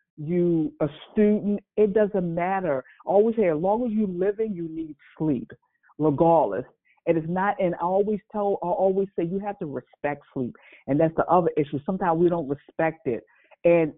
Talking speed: 190 wpm